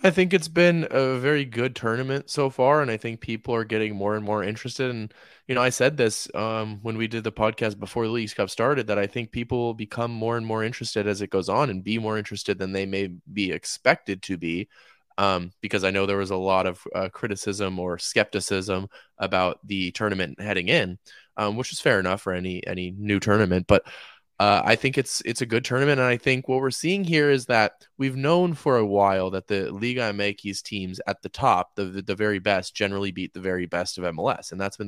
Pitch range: 95-120 Hz